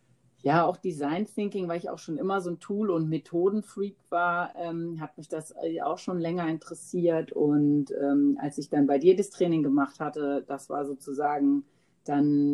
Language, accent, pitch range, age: German, German, 140-170 Hz, 40-59